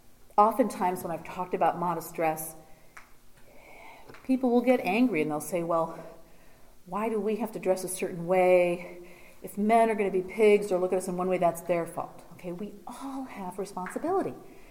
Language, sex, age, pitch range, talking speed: English, female, 40-59, 175-240 Hz, 190 wpm